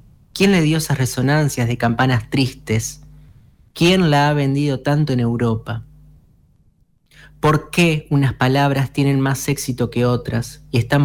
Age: 20-39